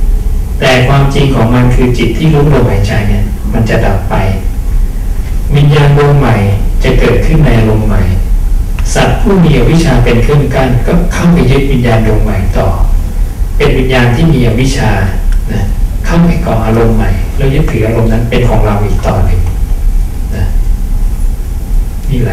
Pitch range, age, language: 100-135 Hz, 60-79, English